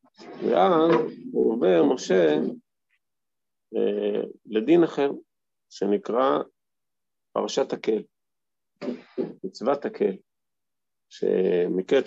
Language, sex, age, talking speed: Hebrew, male, 40-59, 60 wpm